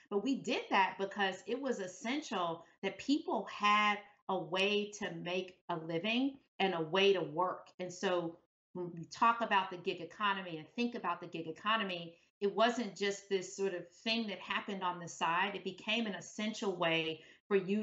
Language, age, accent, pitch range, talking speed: English, 40-59, American, 180-225 Hz, 190 wpm